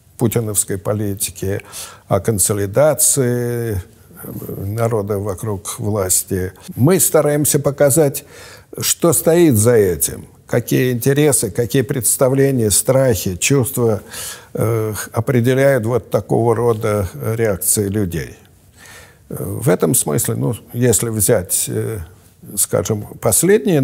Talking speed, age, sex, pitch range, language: 90 wpm, 60-79, male, 100-130 Hz, Russian